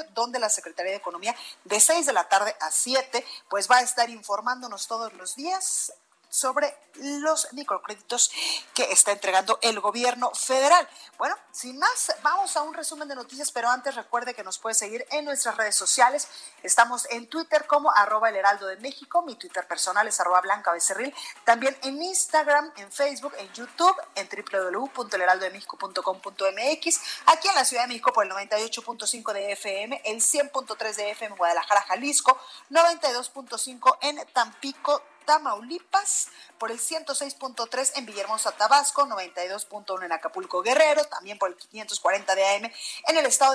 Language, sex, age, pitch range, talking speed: Spanish, female, 30-49, 205-290 Hz, 160 wpm